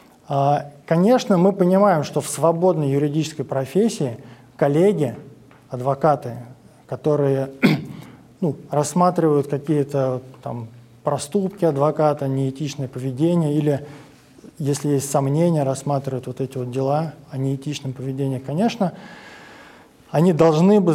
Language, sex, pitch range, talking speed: Russian, male, 140-170 Hz, 95 wpm